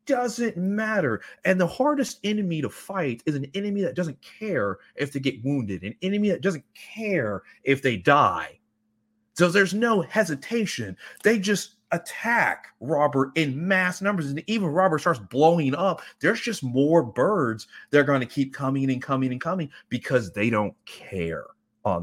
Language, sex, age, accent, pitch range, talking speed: English, male, 30-49, American, 130-205 Hz, 165 wpm